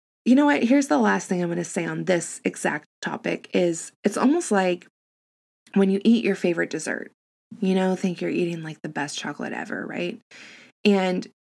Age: 20-39